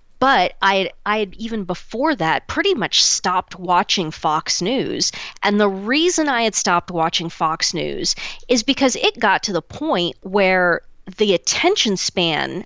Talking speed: 155 wpm